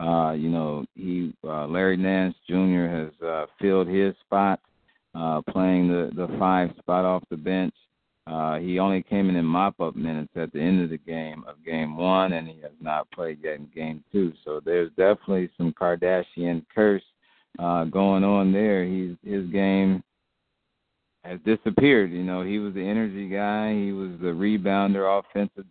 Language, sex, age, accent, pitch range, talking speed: English, male, 50-69, American, 85-100 Hz, 175 wpm